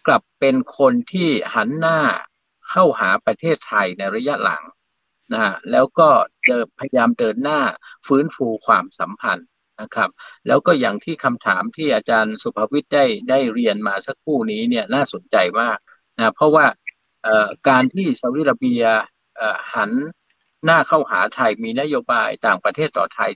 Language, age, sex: Thai, 60-79, male